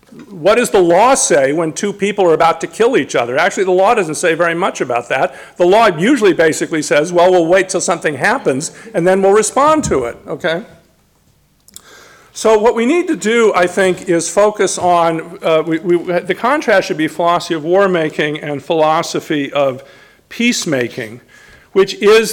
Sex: male